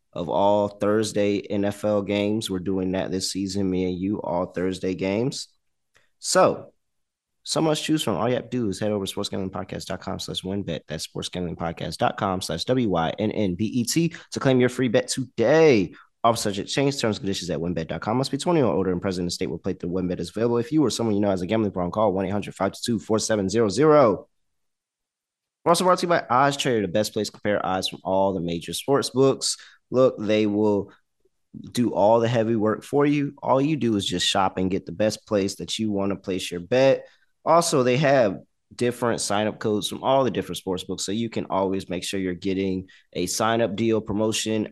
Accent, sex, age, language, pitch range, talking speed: American, male, 20-39, English, 95-125 Hz, 200 wpm